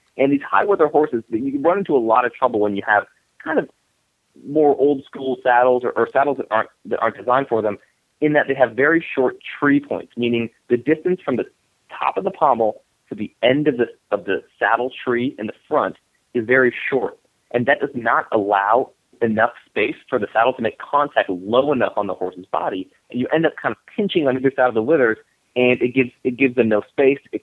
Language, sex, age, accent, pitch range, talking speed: English, male, 30-49, American, 110-140 Hz, 225 wpm